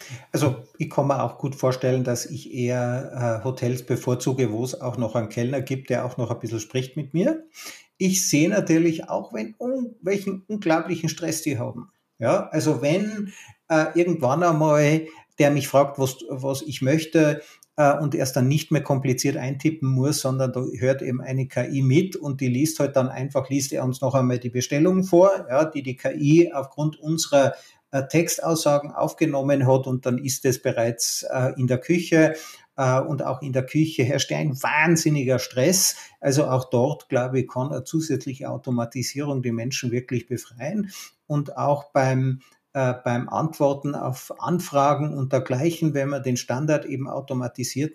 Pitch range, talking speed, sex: 130-155 Hz, 165 wpm, male